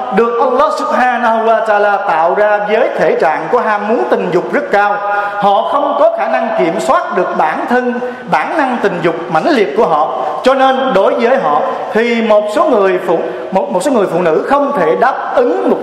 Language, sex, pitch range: Vietnamese, male, 195-240 Hz